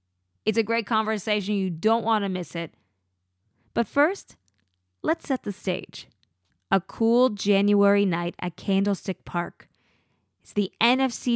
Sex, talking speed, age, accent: female, 135 wpm, 20-39, American